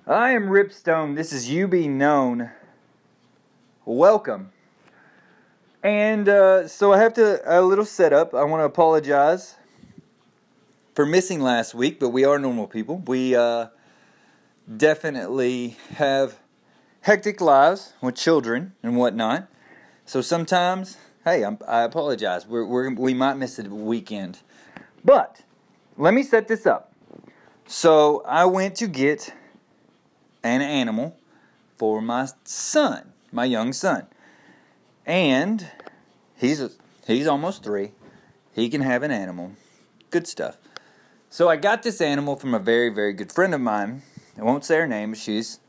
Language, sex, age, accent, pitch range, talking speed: English, male, 30-49, American, 125-190 Hz, 135 wpm